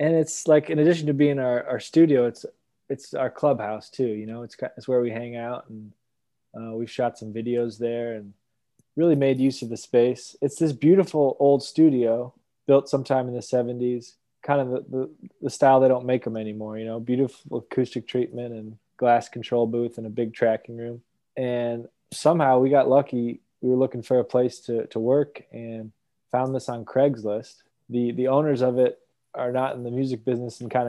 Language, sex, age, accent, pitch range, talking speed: English, male, 20-39, American, 115-135 Hz, 200 wpm